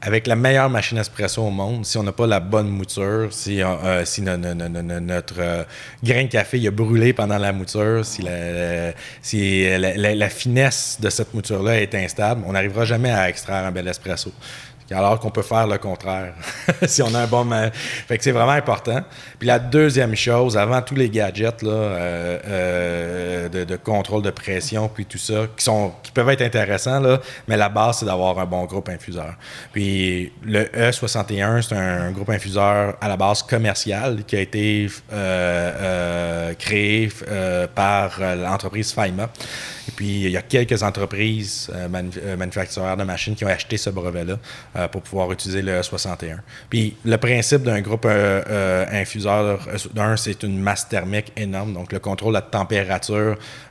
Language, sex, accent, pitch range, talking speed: French, male, Canadian, 95-115 Hz, 180 wpm